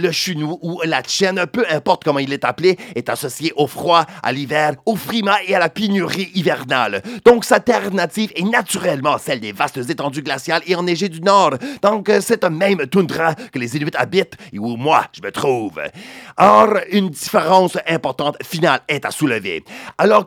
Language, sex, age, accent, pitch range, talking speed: English, male, 40-59, French, 155-210 Hz, 185 wpm